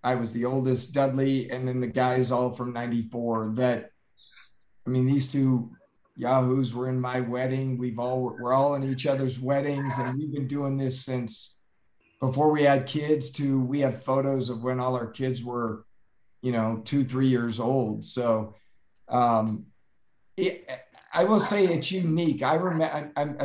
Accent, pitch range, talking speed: American, 120-140 Hz, 165 wpm